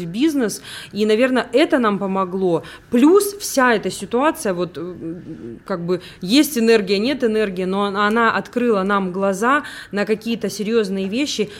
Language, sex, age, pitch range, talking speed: Russian, female, 20-39, 190-230 Hz, 140 wpm